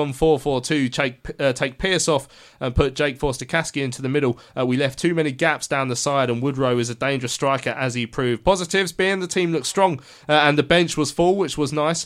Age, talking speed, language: 20-39, 235 wpm, English